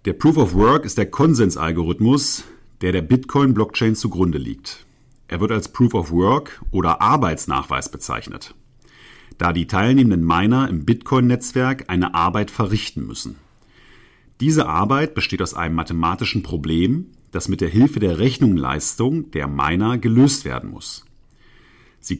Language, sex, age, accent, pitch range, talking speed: German, male, 40-59, German, 90-125 Hz, 125 wpm